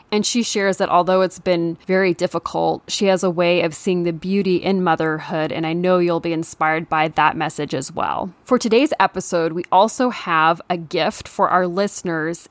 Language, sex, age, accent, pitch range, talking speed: English, female, 20-39, American, 165-200 Hz, 195 wpm